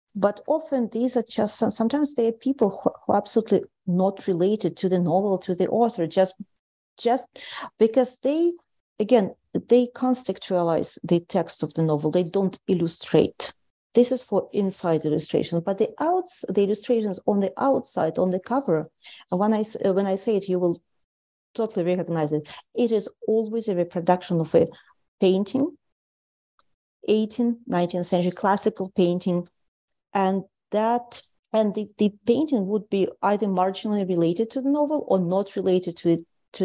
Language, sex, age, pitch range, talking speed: English, female, 40-59, 170-220 Hz, 155 wpm